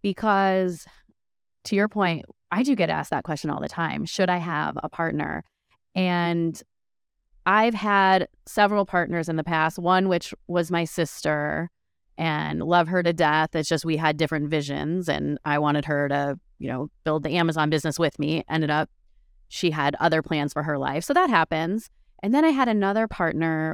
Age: 20-39